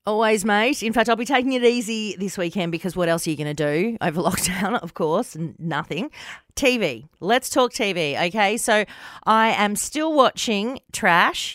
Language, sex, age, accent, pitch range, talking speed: English, female, 40-59, Australian, 170-235 Hz, 180 wpm